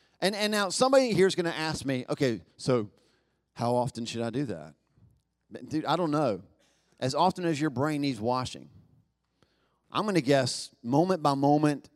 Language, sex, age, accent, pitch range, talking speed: English, male, 40-59, American, 125-190 Hz, 180 wpm